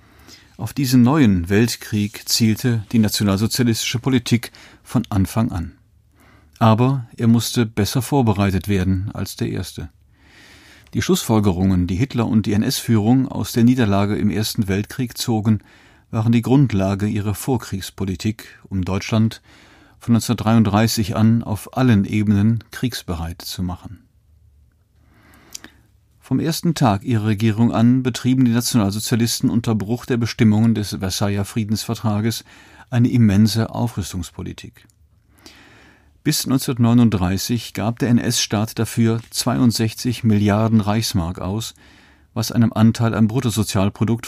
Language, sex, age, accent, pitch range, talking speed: German, male, 40-59, German, 100-115 Hz, 115 wpm